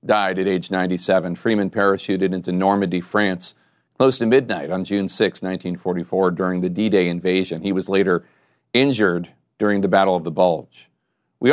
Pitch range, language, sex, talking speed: 95-110 Hz, English, male, 160 wpm